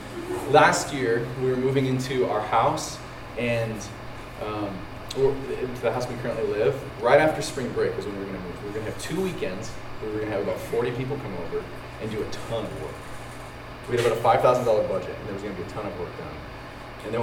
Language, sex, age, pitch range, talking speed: English, male, 30-49, 120-165 Hz, 245 wpm